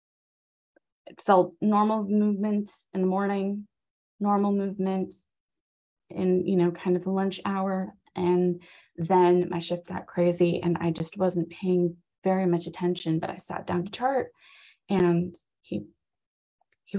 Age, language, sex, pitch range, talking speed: 20-39, English, female, 170-190 Hz, 140 wpm